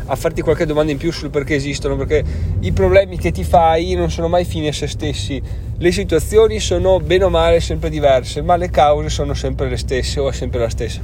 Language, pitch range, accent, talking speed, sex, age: Italian, 125-175 Hz, native, 230 wpm, male, 30-49